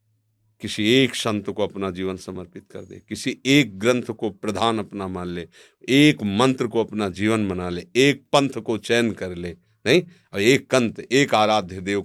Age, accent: 40-59, native